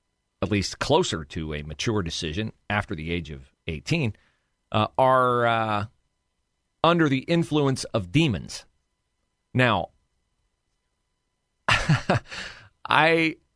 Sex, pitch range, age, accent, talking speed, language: male, 90-130 Hz, 40-59, American, 95 wpm, English